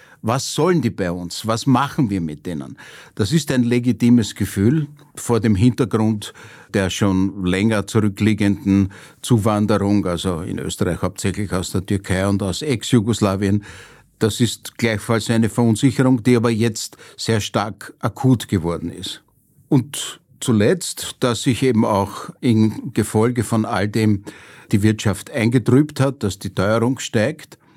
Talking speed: 140 wpm